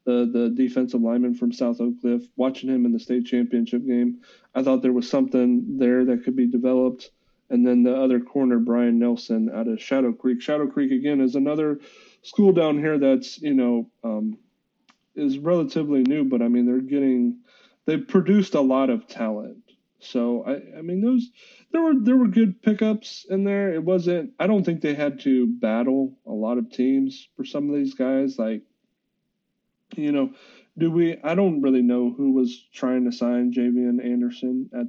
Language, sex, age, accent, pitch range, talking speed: English, male, 30-49, American, 120-200 Hz, 195 wpm